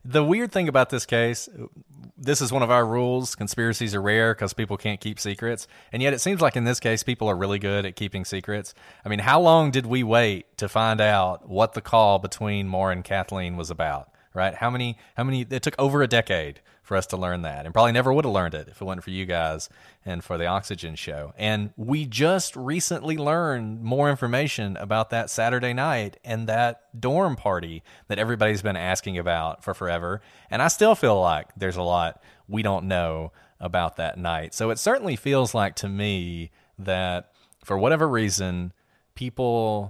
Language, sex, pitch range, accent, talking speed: English, male, 95-120 Hz, American, 200 wpm